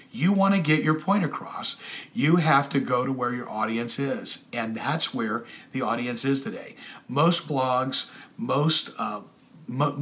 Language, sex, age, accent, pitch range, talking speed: English, male, 50-69, American, 125-160 Hz, 170 wpm